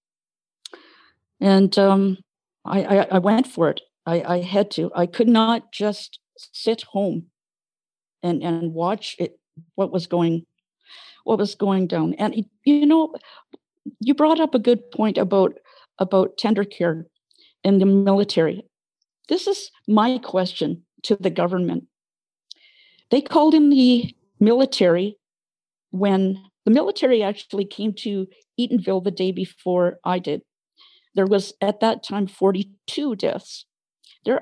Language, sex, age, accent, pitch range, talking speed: English, female, 50-69, American, 185-245 Hz, 135 wpm